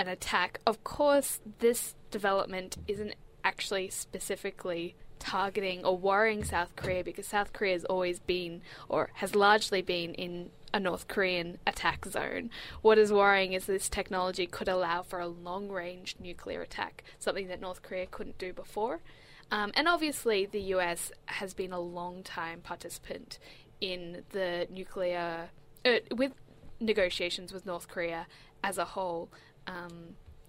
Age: 10-29